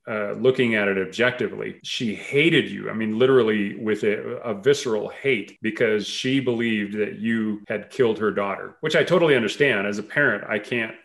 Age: 40-59